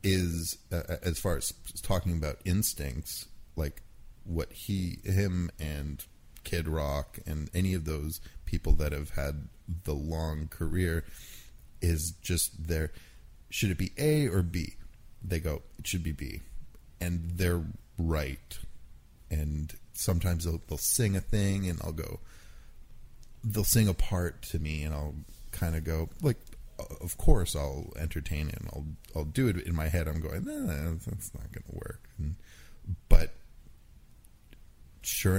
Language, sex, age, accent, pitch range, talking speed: English, male, 30-49, American, 75-95 Hz, 155 wpm